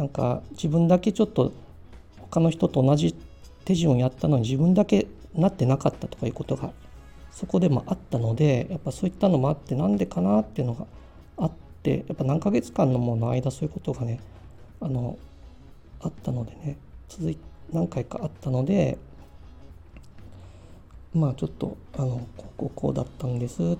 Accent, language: native, Japanese